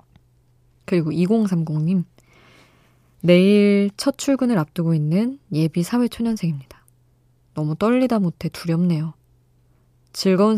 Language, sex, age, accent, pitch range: Korean, female, 20-39, native, 140-185 Hz